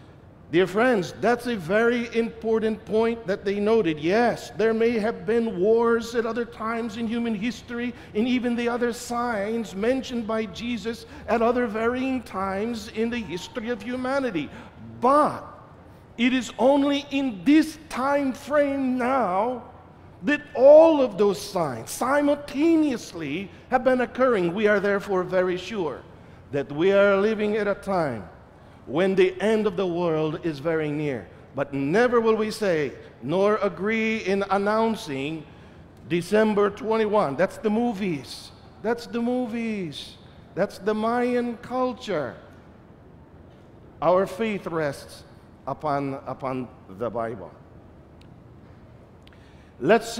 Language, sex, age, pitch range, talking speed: Filipino, male, 50-69, 170-235 Hz, 130 wpm